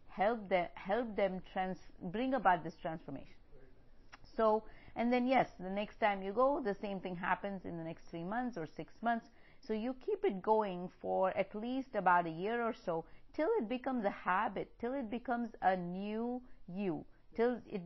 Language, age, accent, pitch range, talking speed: English, 50-69, Indian, 180-225 Hz, 180 wpm